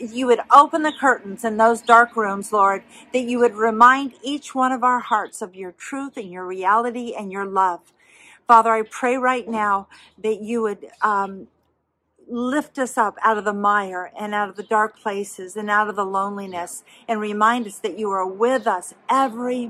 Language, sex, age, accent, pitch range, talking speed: English, female, 50-69, American, 200-235 Hz, 195 wpm